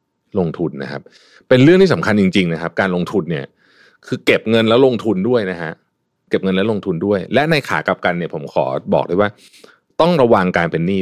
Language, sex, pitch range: Thai, male, 95-145 Hz